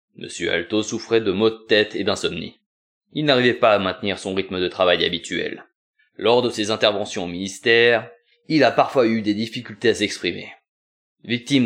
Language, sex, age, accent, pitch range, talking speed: French, male, 20-39, French, 95-115 Hz, 175 wpm